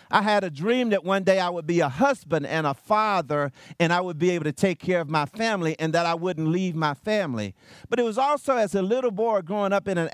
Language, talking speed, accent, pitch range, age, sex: English, 265 wpm, American, 175-225 Hz, 50-69, male